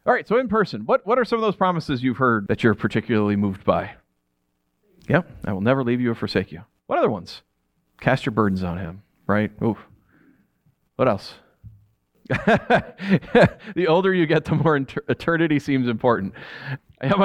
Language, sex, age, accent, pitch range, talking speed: English, male, 40-59, American, 110-175 Hz, 175 wpm